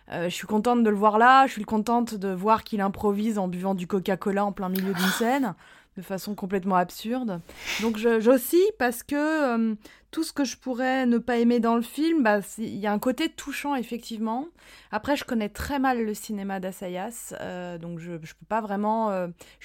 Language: French